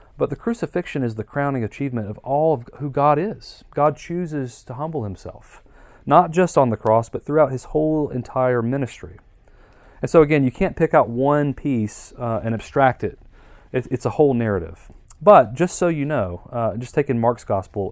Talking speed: 190 wpm